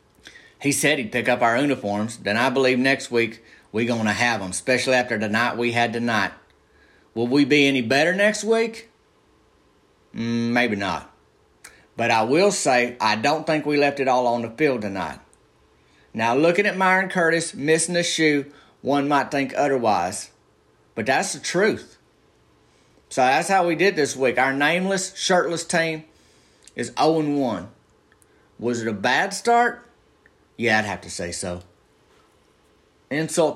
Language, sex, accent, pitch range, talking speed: English, male, American, 115-150 Hz, 160 wpm